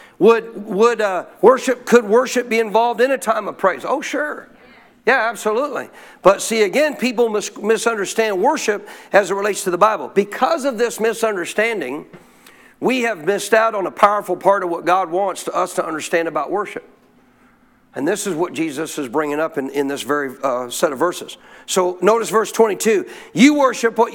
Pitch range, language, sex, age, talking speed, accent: 185-235 Hz, English, male, 50-69, 180 wpm, American